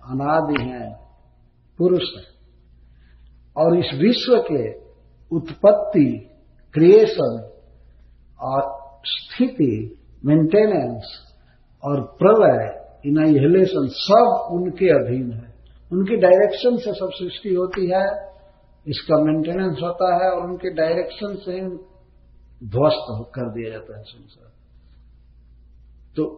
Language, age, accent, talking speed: Hindi, 50-69, native, 100 wpm